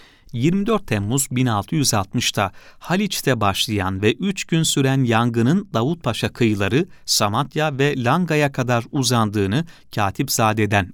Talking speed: 100 wpm